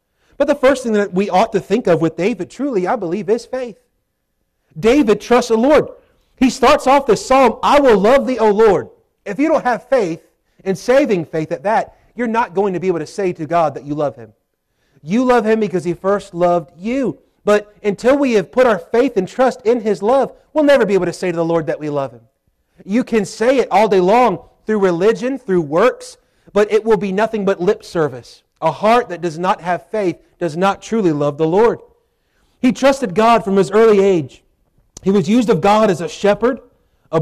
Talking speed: 220 wpm